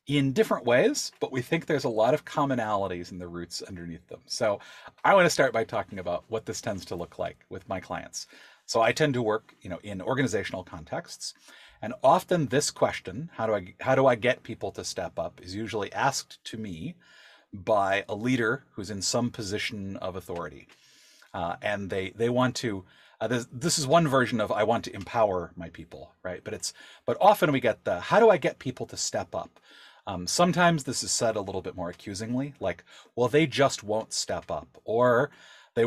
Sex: male